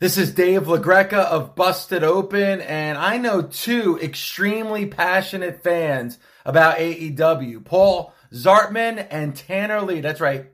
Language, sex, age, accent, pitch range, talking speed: English, male, 30-49, American, 170-235 Hz, 130 wpm